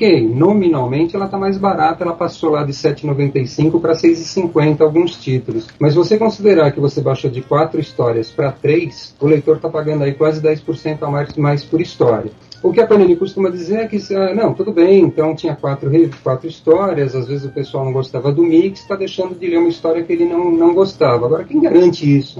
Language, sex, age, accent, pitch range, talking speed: Portuguese, male, 40-59, Brazilian, 135-170 Hz, 210 wpm